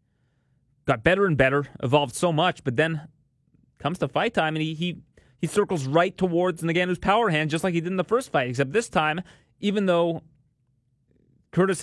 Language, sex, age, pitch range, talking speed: English, male, 30-49, 120-155 Hz, 190 wpm